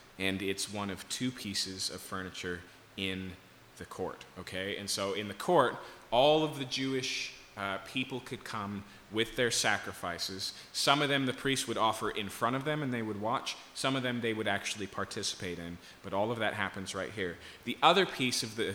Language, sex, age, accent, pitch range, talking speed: English, male, 30-49, American, 95-130 Hz, 200 wpm